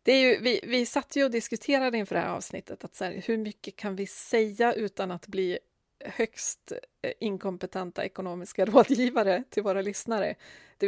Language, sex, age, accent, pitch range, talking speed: Swedish, female, 30-49, native, 195-245 Hz, 180 wpm